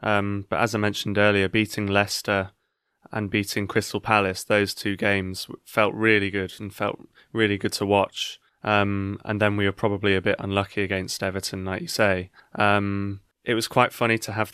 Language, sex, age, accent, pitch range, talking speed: English, male, 20-39, British, 100-110 Hz, 185 wpm